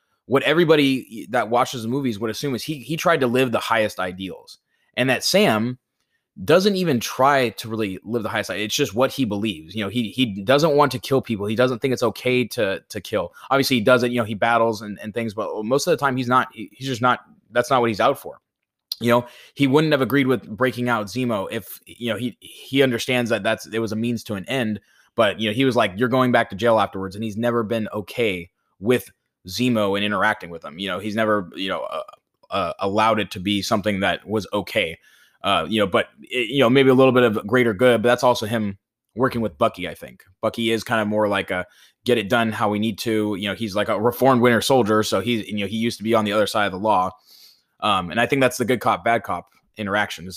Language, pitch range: English, 105-125 Hz